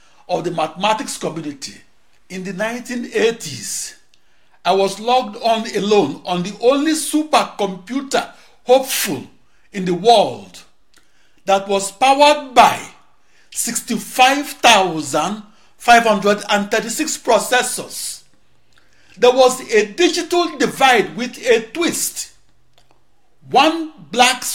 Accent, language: Nigerian, English